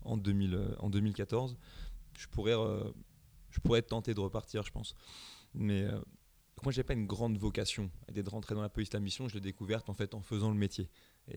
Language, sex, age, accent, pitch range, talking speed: English, male, 20-39, French, 100-110 Hz, 205 wpm